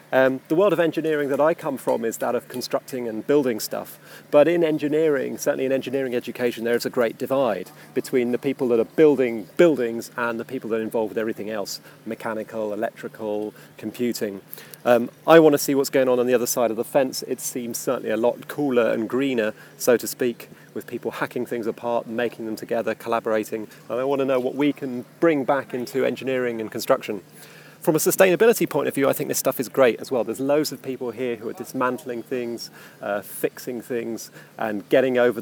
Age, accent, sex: 30-49, British, male